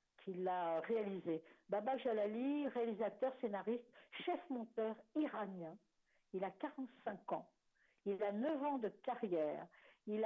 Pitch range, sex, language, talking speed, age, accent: 195-250 Hz, female, French, 125 wpm, 60-79, French